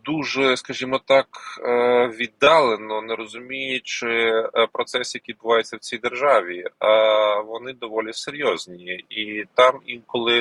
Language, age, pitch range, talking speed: Ukrainian, 20-39, 110-130 Hz, 110 wpm